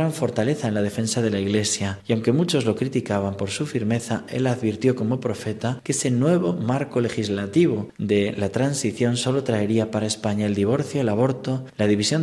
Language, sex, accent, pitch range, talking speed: Spanish, male, Spanish, 110-130 Hz, 180 wpm